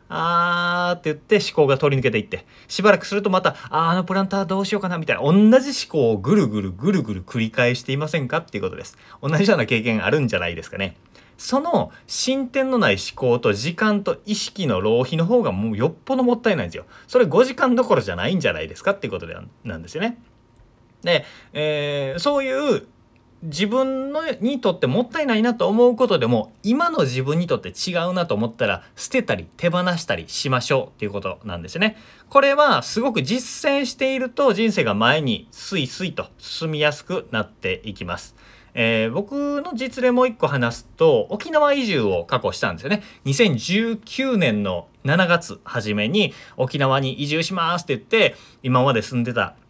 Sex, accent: male, native